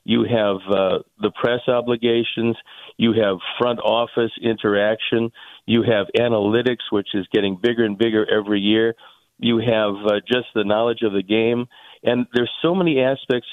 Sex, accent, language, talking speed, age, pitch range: male, American, English, 160 wpm, 50-69, 105-120 Hz